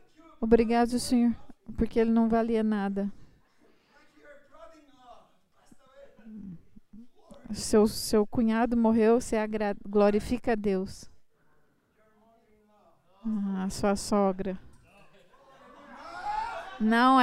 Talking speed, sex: 75 wpm, female